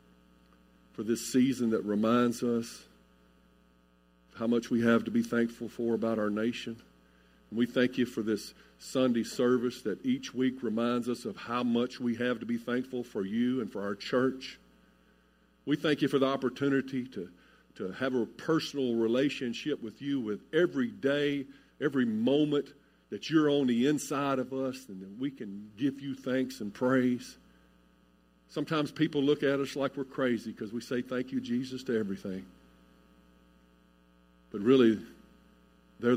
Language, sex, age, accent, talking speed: English, male, 50-69, American, 165 wpm